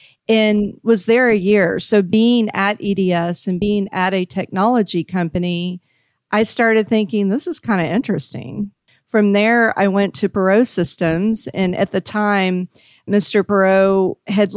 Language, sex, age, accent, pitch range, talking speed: English, female, 50-69, American, 185-215 Hz, 150 wpm